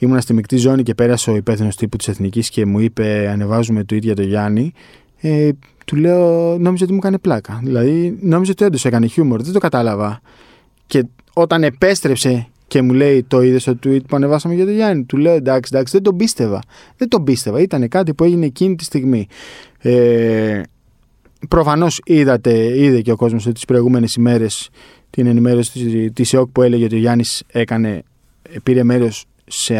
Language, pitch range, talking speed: Greek, 115-150 Hz, 185 wpm